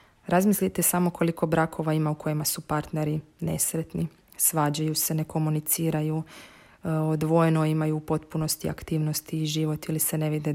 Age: 30-49